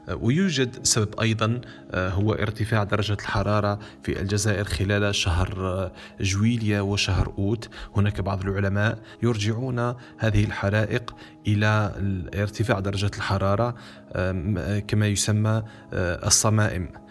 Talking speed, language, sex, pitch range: 95 wpm, Arabic, male, 100-115 Hz